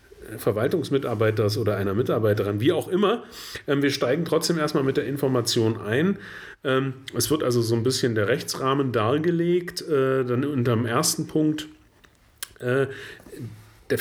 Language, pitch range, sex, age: German, 120-170 Hz, male, 40-59